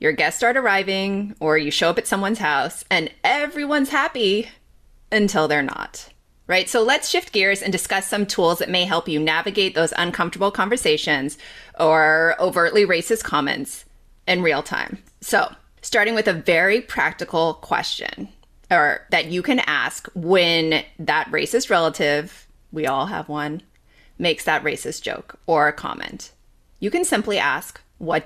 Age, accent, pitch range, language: 30-49, American, 160-220 Hz, English